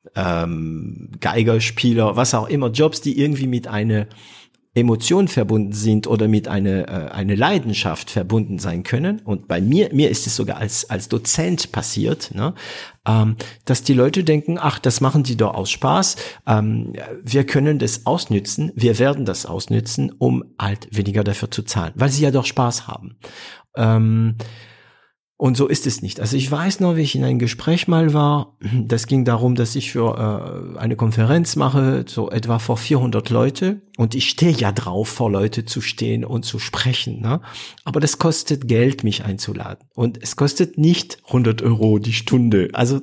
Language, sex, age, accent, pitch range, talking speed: German, male, 50-69, German, 110-135 Hz, 170 wpm